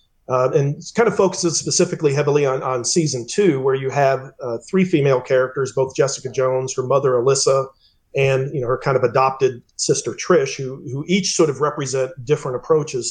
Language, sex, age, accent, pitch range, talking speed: English, male, 40-59, American, 130-150 Hz, 190 wpm